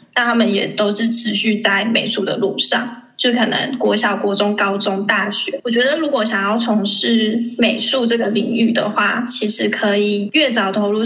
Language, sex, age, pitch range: Chinese, female, 10-29, 205-235 Hz